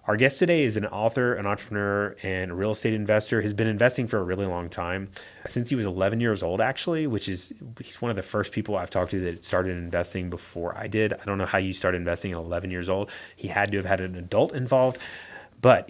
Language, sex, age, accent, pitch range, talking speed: English, male, 30-49, American, 95-120 Hz, 245 wpm